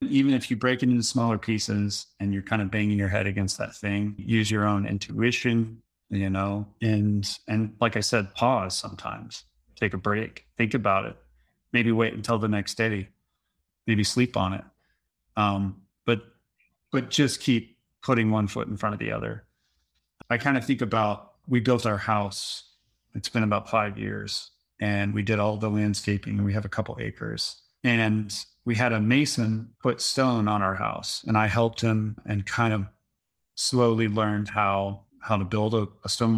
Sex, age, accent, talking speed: male, 30-49, American, 185 wpm